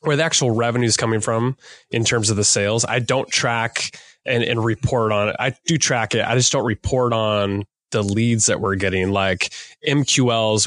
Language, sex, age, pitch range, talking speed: English, male, 20-39, 110-130 Hz, 200 wpm